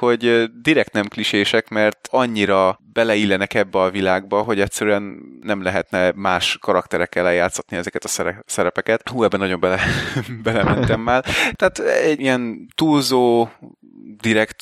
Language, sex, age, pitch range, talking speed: Hungarian, male, 20-39, 95-115 Hz, 125 wpm